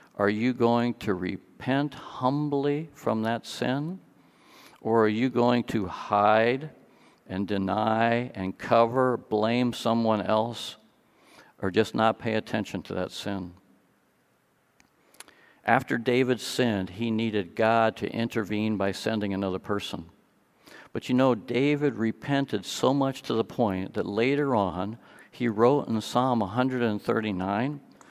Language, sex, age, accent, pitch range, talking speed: English, male, 50-69, American, 105-125 Hz, 130 wpm